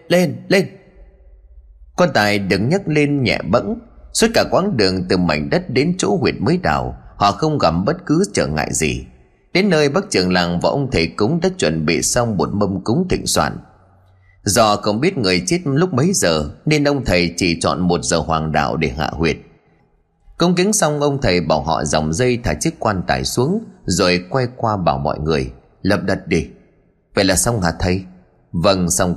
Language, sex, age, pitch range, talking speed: Vietnamese, male, 30-49, 85-130 Hz, 200 wpm